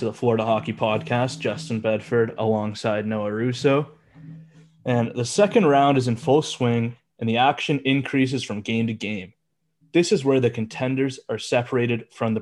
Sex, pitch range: male, 110-145 Hz